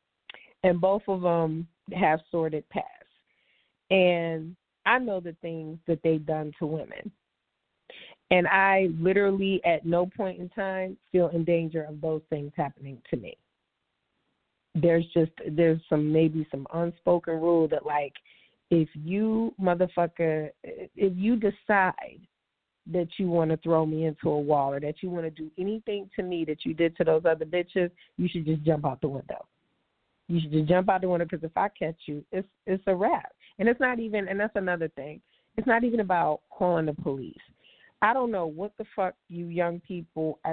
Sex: female